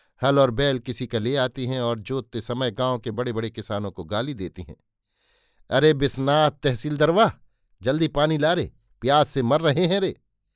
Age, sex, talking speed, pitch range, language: 60-79, male, 190 wpm, 110-145 Hz, Hindi